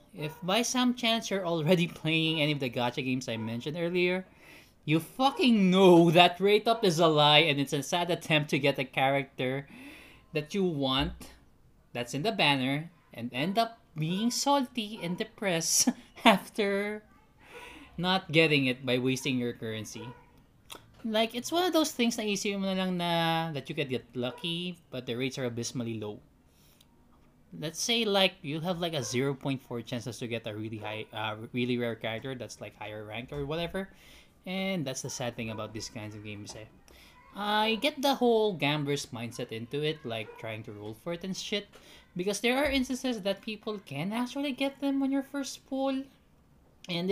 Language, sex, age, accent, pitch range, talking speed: Filipino, male, 20-39, native, 130-205 Hz, 175 wpm